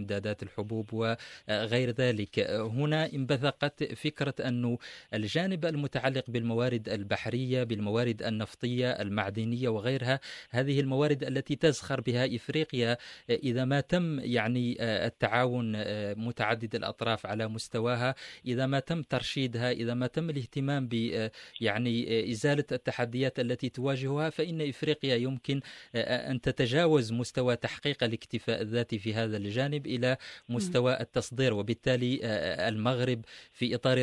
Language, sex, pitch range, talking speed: English, male, 115-135 Hz, 110 wpm